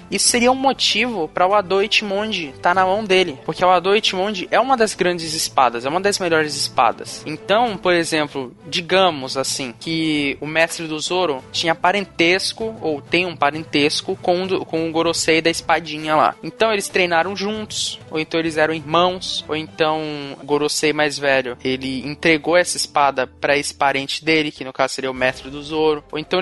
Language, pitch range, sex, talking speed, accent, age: Portuguese, 150-185 Hz, male, 185 wpm, Brazilian, 20-39